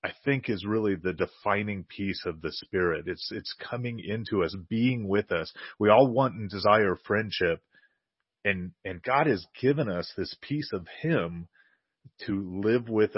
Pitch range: 95-125 Hz